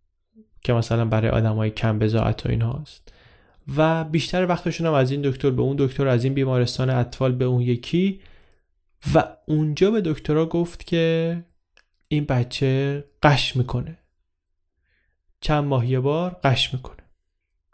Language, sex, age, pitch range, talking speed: Persian, male, 20-39, 115-150 Hz, 140 wpm